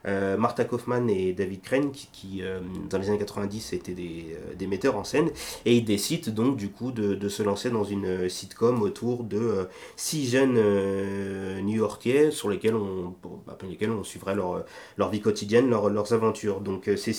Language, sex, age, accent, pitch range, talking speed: French, male, 30-49, French, 90-110 Hz, 195 wpm